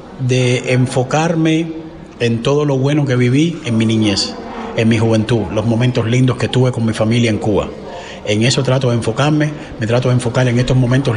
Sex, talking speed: male, 195 wpm